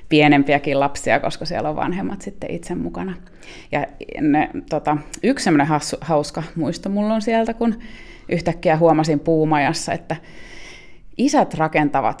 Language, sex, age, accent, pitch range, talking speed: Finnish, female, 30-49, native, 145-175 Hz, 125 wpm